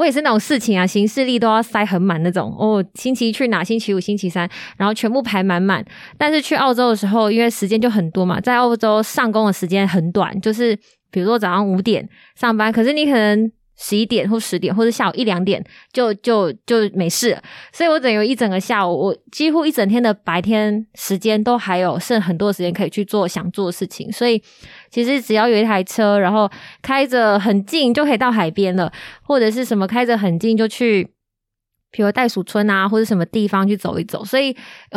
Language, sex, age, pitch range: Chinese, female, 20-39, 195-240 Hz